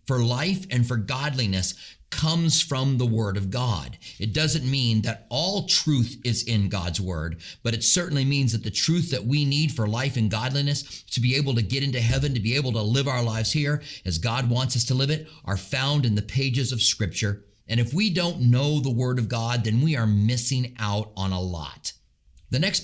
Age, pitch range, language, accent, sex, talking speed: 40-59, 110-145 Hz, English, American, male, 220 wpm